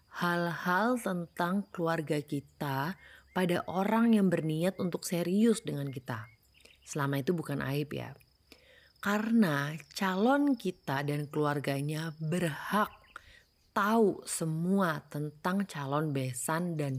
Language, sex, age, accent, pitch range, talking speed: Indonesian, female, 30-49, native, 145-185 Hz, 100 wpm